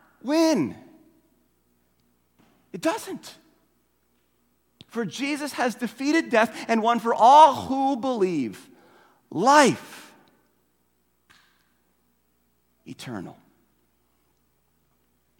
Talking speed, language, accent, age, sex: 60 wpm, English, American, 40-59, male